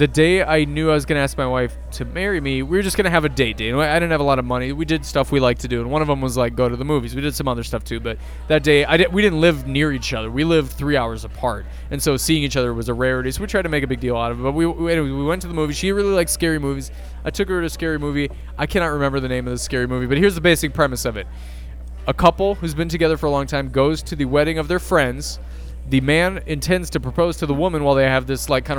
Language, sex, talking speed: English, male, 320 wpm